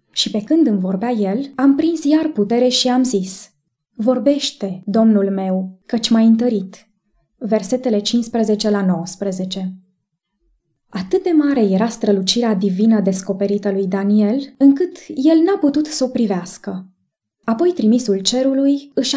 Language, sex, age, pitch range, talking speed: English, female, 20-39, 200-250 Hz, 135 wpm